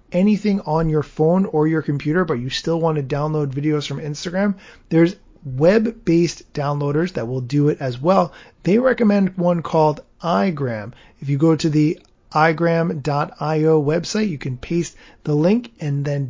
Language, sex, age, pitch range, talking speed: English, male, 30-49, 150-185 Hz, 165 wpm